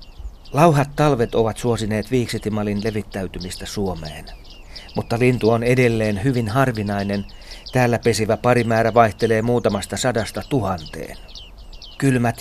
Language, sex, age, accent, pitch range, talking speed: Finnish, male, 40-59, native, 100-120 Hz, 100 wpm